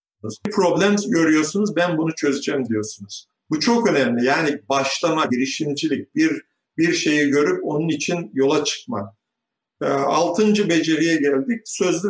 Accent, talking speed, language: native, 130 wpm, Turkish